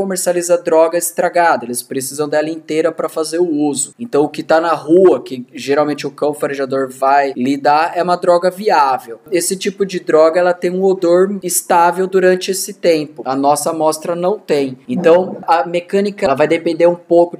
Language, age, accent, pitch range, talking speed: Portuguese, 20-39, Brazilian, 160-195 Hz, 185 wpm